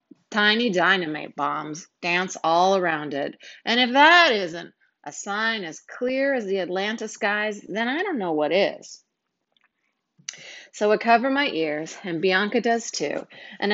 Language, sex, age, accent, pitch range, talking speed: English, female, 30-49, American, 170-230 Hz, 155 wpm